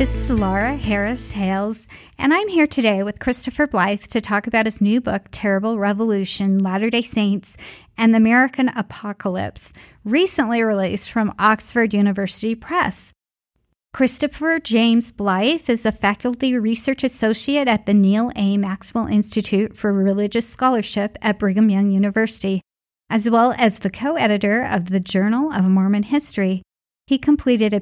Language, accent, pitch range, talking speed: English, American, 200-245 Hz, 140 wpm